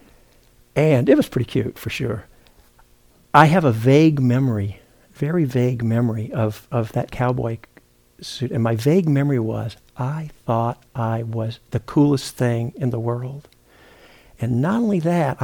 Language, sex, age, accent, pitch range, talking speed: English, male, 60-79, American, 110-145 Hz, 150 wpm